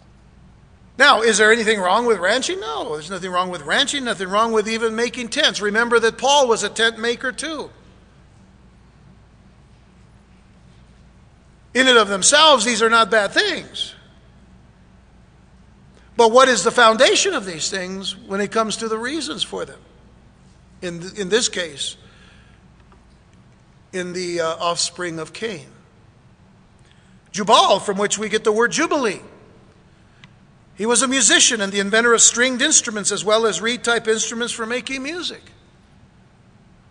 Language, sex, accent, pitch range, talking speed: English, male, American, 195-235 Hz, 145 wpm